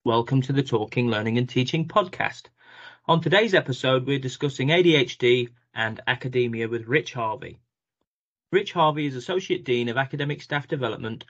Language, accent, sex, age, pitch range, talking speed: English, British, male, 30-49, 120-155 Hz, 150 wpm